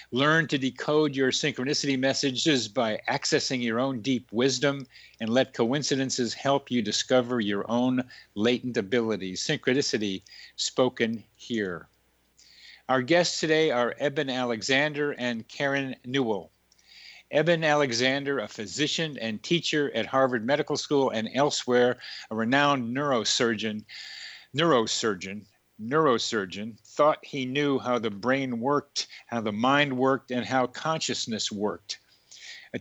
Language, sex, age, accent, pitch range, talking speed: English, male, 50-69, American, 115-140 Hz, 125 wpm